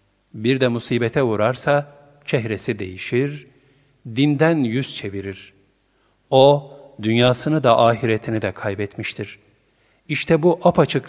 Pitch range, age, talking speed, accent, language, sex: 110-145 Hz, 50-69, 95 wpm, native, Turkish, male